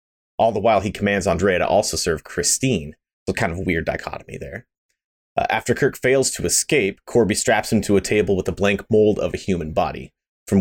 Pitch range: 95-110 Hz